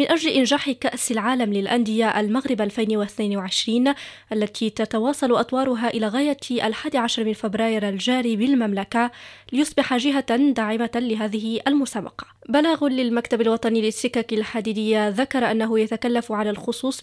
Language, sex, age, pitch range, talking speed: French, female, 20-39, 215-250 Hz, 115 wpm